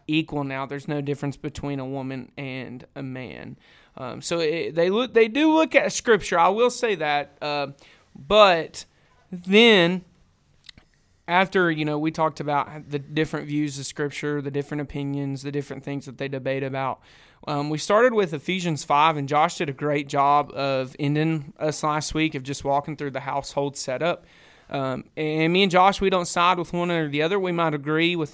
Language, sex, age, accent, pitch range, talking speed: English, male, 30-49, American, 140-170 Hz, 190 wpm